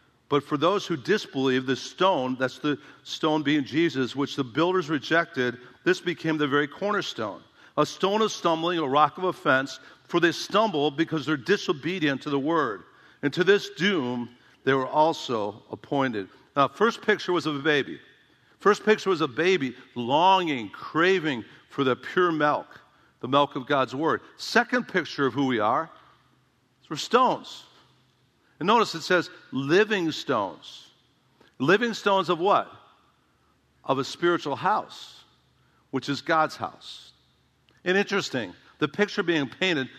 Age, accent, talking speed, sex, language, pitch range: 50-69, American, 150 wpm, male, English, 135-180 Hz